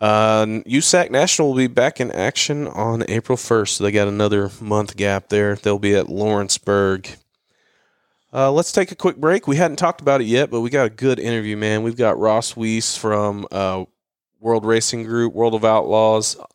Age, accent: 30-49, American